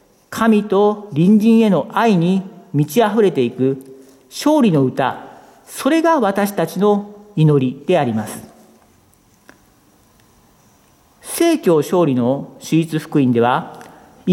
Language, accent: Japanese, native